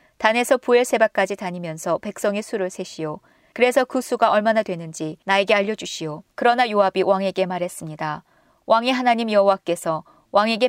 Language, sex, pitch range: Korean, female, 175-230 Hz